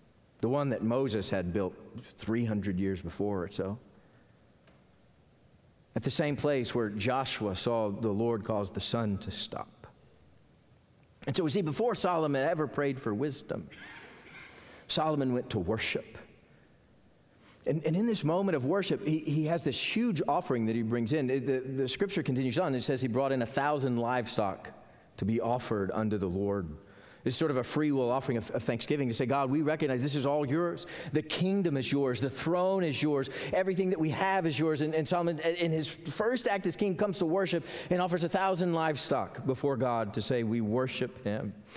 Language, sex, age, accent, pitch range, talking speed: English, male, 40-59, American, 115-165 Hz, 190 wpm